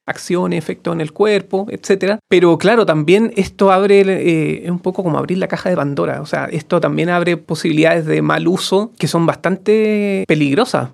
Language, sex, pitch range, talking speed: Spanish, male, 165-200 Hz, 185 wpm